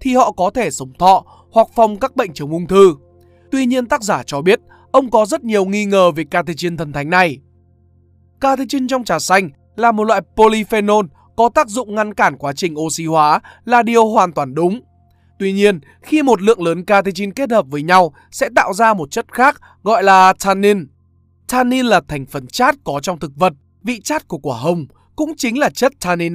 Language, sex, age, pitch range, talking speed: Vietnamese, male, 20-39, 155-235 Hz, 205 wpm